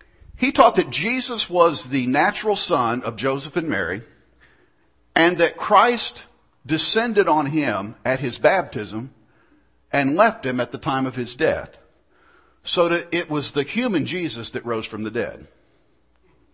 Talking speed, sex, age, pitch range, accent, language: 150 wpm, male, 50-69, 120-205 Hz, American, English